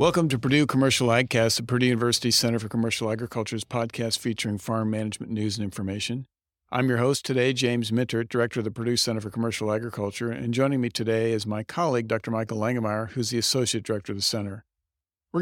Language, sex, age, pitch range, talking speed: English, male, 50-69, 115-135 Hz, 200 wpm